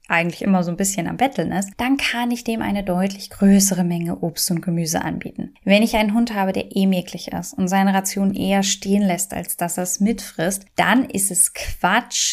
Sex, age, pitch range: female, 10-29, 180-215 Hz